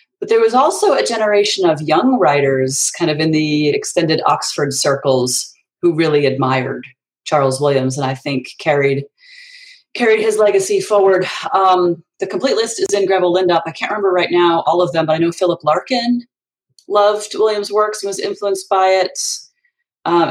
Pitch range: 155-215 Hz